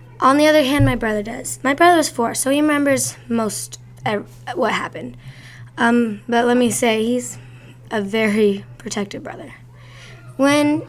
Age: 10-29